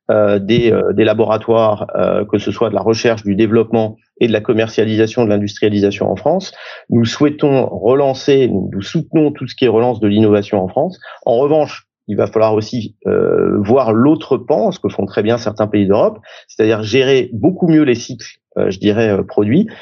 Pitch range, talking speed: 105-130 Hz, 190 wpm